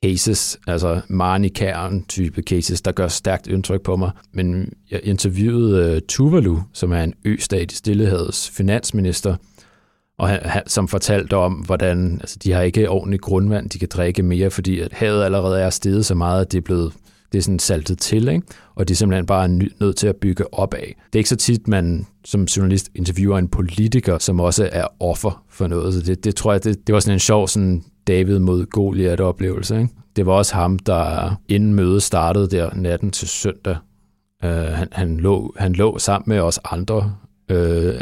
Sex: male